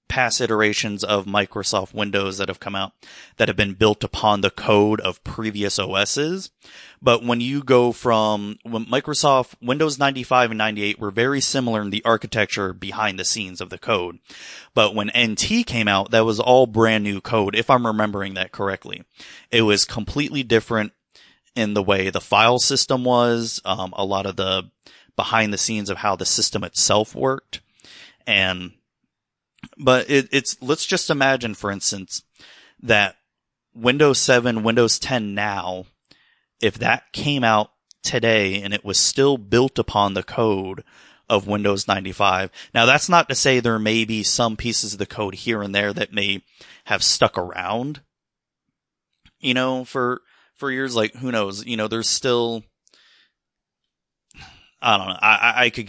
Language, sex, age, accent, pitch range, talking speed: English, male, 30-49, American, 100-125 Hz, 165 wpm